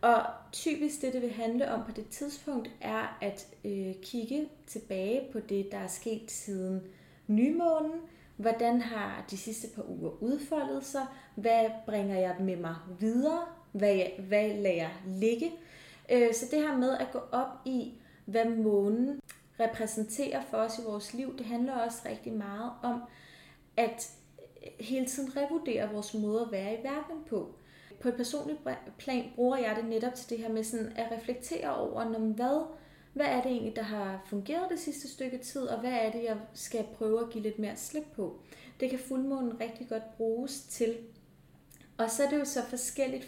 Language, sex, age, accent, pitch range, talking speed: Danish, female, 30-49, native, 220-265 Hz, 175 wpm